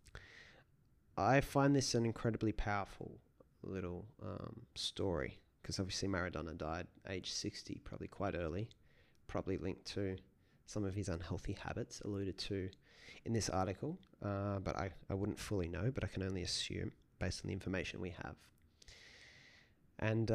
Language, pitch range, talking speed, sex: English, 95-110 Hz, 150 wpm, male